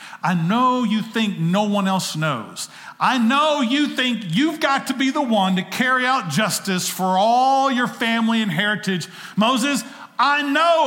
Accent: American